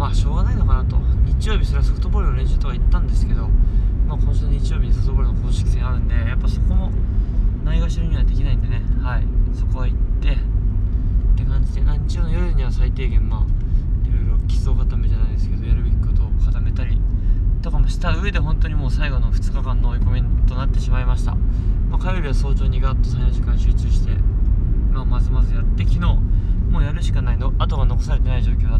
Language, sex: Japanese, male